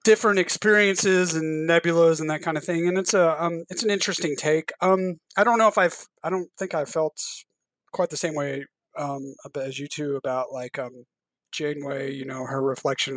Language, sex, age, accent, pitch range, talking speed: English, male, 30-49, American, 140-175 Hz, 200 wpm